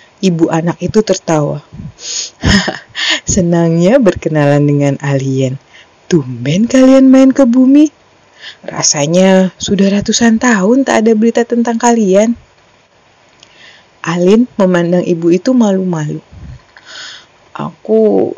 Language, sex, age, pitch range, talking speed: Indonesian, female, 30-49, 165-230 Hz, 95 wpm